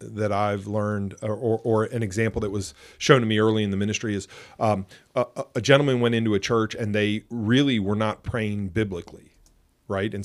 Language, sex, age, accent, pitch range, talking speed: English, male, 40-59, American, 105-125 Hz, 200 wpm